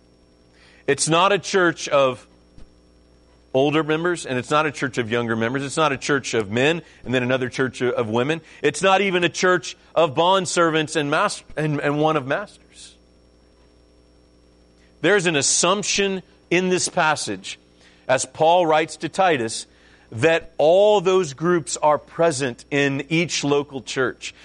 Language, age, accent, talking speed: English, 40-59, American, 150 wpm